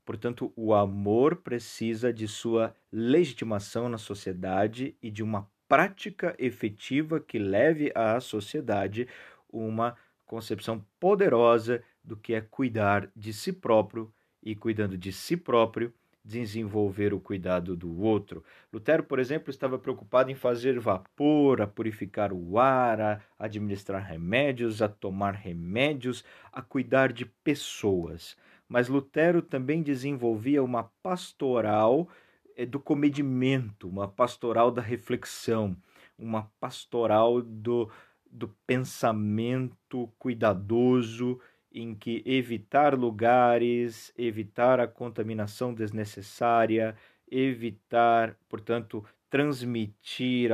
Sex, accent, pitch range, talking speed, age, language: male, Brazilian, 105-125 Hz, 105 wpm, 40-59, Portuguese